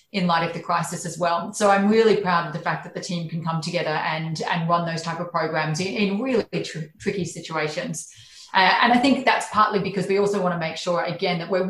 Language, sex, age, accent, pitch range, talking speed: English, female, 30-49, Australian, 165-200 Hz, 245 wpm